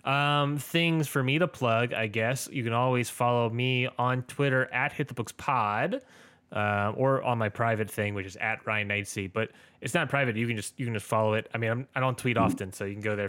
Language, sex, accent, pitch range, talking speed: English, male, American, 115-140 Hz, 245 wpm